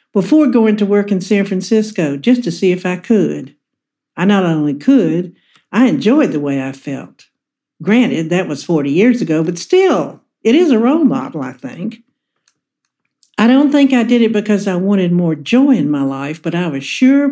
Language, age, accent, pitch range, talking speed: English, 60-79, American, 180-255 Hz, 195 wpm